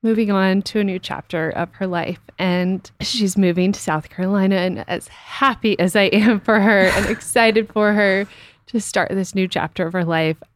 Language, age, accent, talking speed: English, 20-39, American, 200 wpm